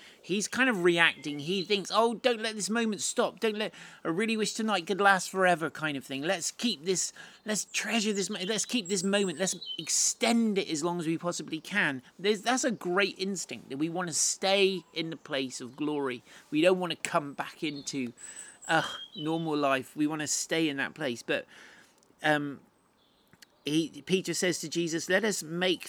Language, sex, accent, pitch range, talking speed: English, male, British, 125-185 Hz, 195 wpm